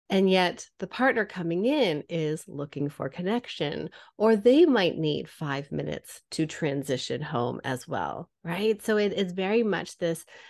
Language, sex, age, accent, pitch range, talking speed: English, female, 30-49, American, 155-190 Hz, 160 wpm